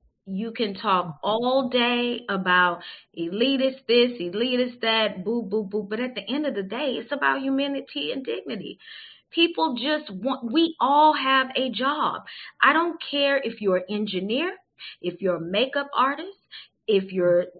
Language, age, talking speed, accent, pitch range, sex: English, 30-49, 160 wpm, American, 195-270 Hz, female